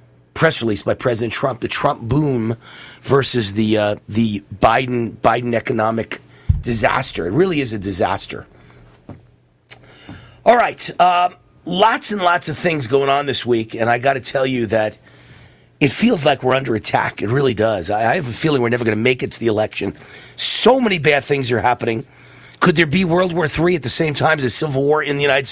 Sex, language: male, English